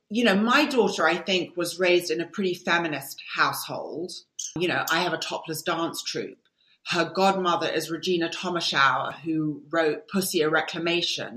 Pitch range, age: 165-210 Hz, 30-49